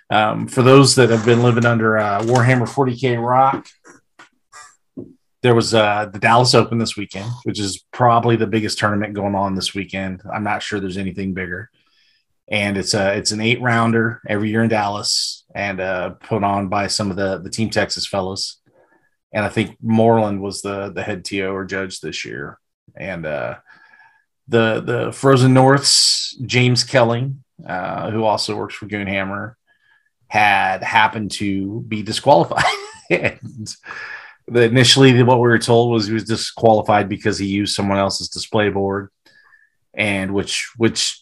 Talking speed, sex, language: 160 wpm, male, English